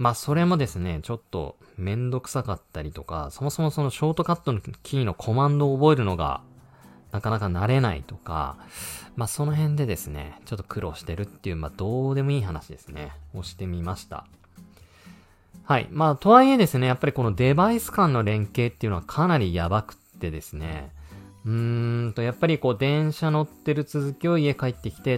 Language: Japanese